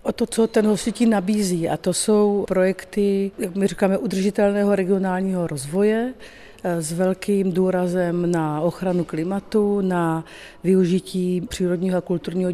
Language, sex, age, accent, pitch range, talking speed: Czech, female, 50-69, native, 170-190 Hz, 130 wpm